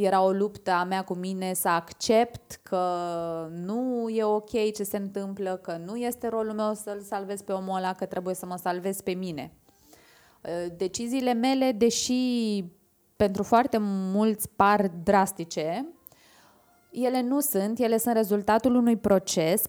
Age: 20-39